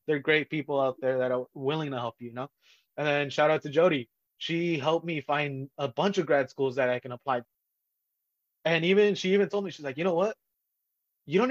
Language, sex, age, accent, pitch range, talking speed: English, male, 20-39, American, 135-165 Hz, 245 wpm